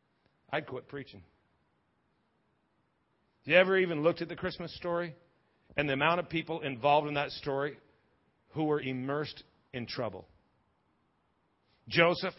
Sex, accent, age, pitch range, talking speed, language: male, American, 50-69, 140-170 Hz, 130 wpm, English